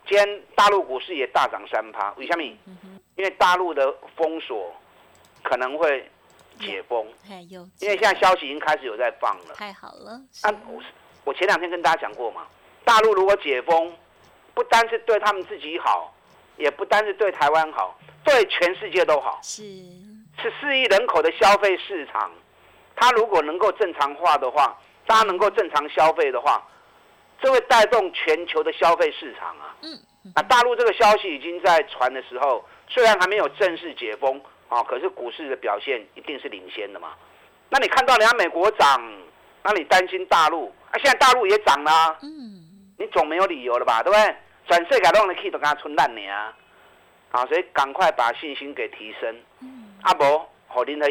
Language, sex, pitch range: Chinese, male, 165-220 Hz